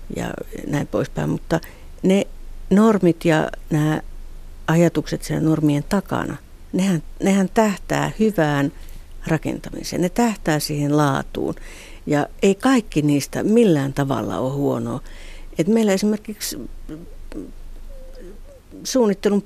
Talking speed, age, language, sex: 100 wpm, 60-79, Finnish, female